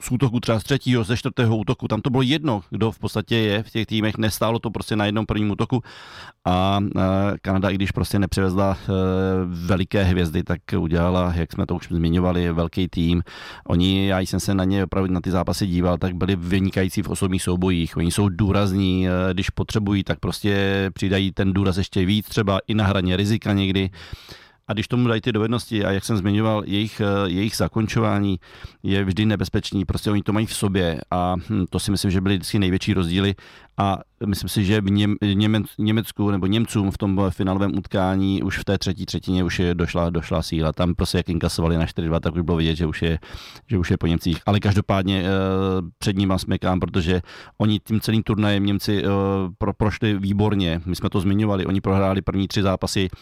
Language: Czech